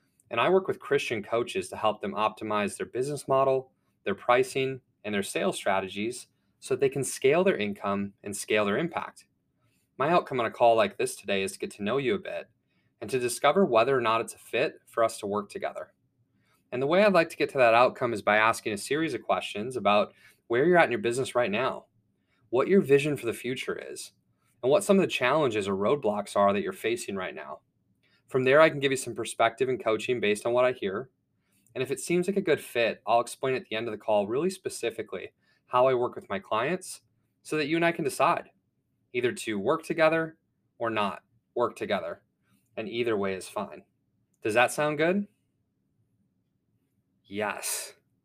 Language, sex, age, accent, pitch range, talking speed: English, male, 20-39, American, 115-185 Hz, 210 wpm